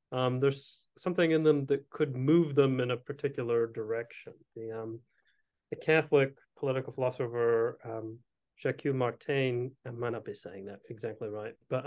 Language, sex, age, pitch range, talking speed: English, male, 30-49, 120-155 Hz, 155 wpm